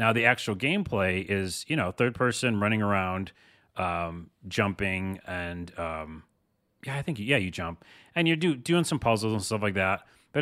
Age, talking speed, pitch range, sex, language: 30-49, 180 wpm, 95-115 Hz, male, English